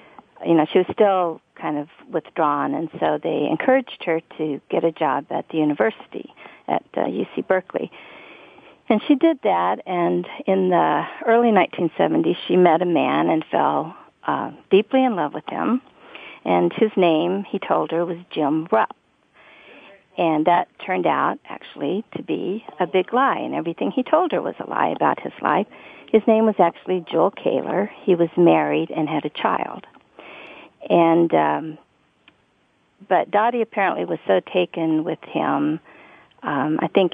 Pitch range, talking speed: 155-215 Hz, 165 wpm